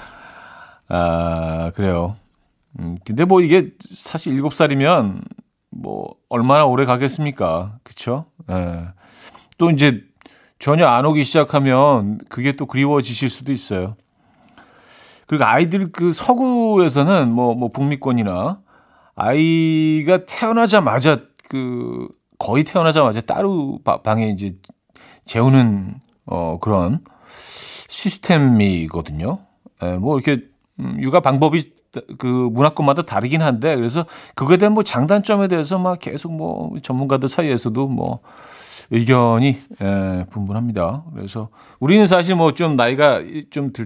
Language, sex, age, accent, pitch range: Korean, male, 40-59, native, 100-155 Hz